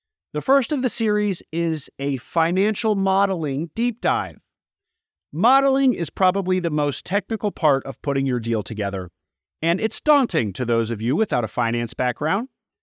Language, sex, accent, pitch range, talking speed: English, male, American, 135-215 Hz, 160 wpm